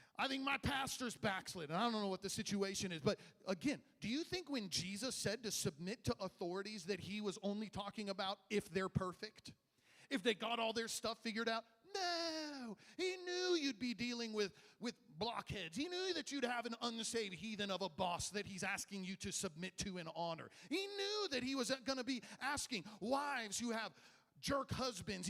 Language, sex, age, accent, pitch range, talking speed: English, male, 40-59, American, 175-245 Hz, 200 wpm